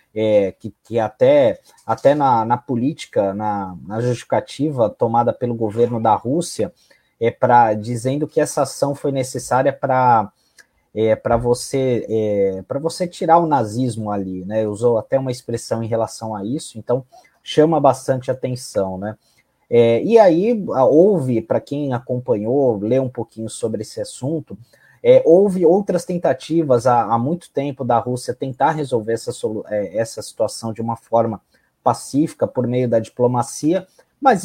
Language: Portuguese